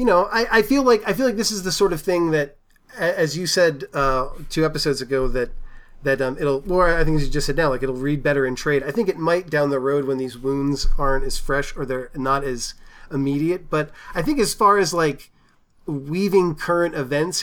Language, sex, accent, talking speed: English, male, American, 240 wpm